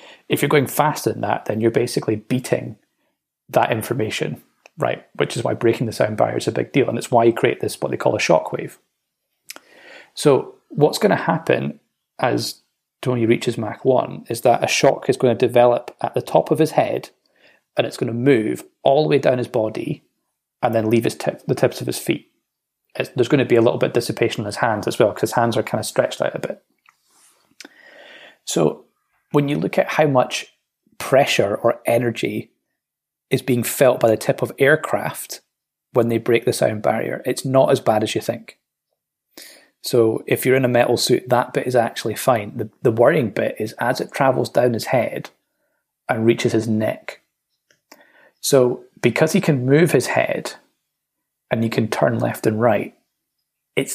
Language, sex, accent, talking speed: English, male, British, 195 wpm